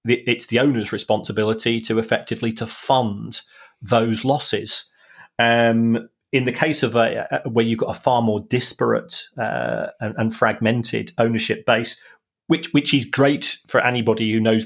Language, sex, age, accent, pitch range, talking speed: English, male, 30-49, British, 110-125 Hz, 155 wpm